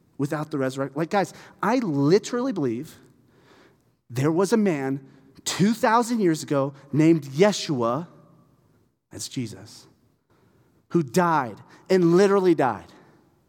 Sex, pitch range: male, 155-215 Hz